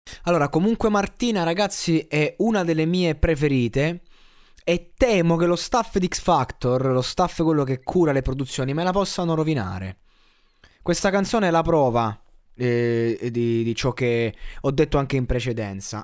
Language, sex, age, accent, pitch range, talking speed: Italian, male, 20-39, native, 130-185 Hz, 155 wpm